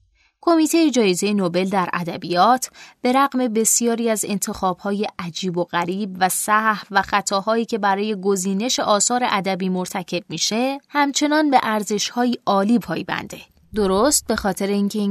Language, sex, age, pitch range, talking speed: Persian, female, 20-39, 185-245 Hz, 130 wpm